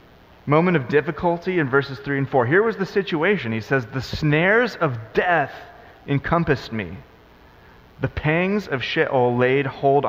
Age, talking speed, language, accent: 30-49, 155 wpm, English, American